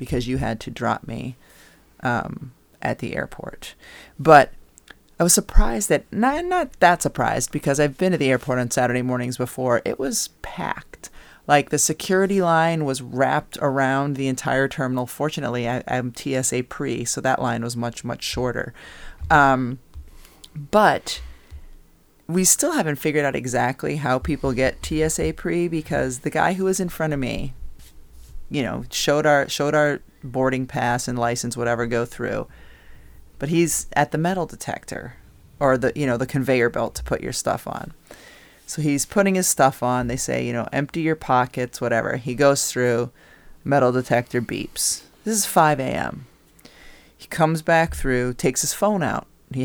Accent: American